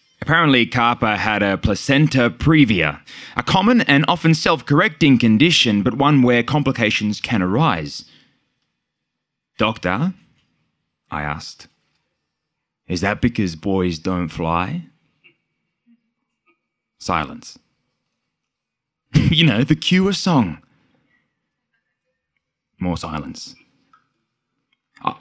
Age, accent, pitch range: 20-39, Australian, 105-165 Hz